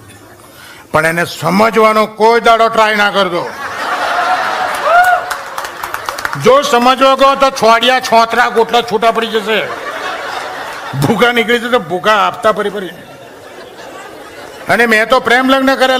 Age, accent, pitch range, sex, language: 50-69, native, 150-215 Hz, male, Gujarati